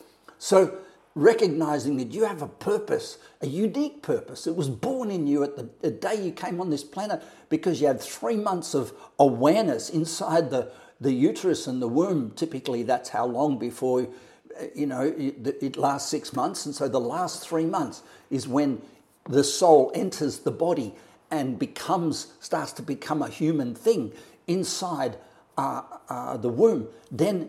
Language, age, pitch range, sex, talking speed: English, 50-69, 140-180 Hz, male, 165 wpm